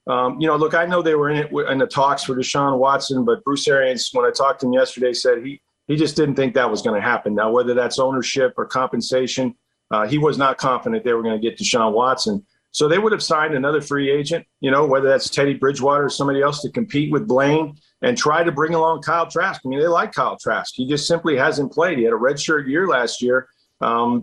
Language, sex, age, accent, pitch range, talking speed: English, male, 40-59, American, 130-160 Hz, 250 wpm